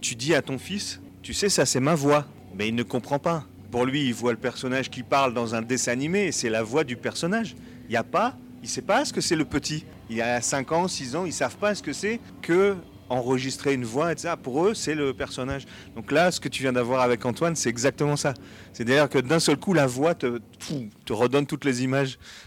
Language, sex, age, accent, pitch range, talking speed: French, male, 30-49, French, 115-145 Hz, 260 wpm